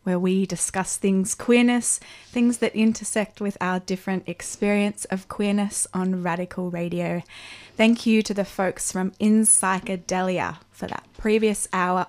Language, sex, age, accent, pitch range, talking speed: English, female, 20-39, Australian, 180-205 Hz, 145 wpm